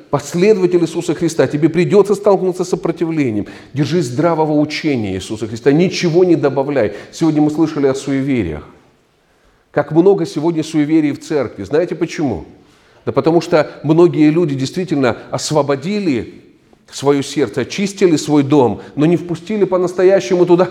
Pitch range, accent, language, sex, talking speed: 135-170 Hz, native, Ukrainian, male, 135 wpm